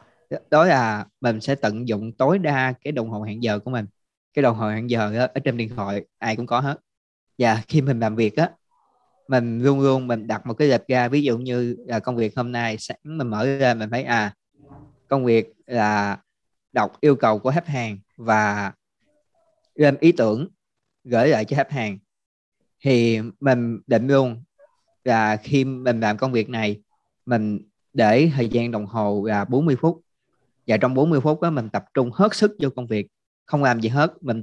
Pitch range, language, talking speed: 110-145 Hz, Vietnamese, 200 wpm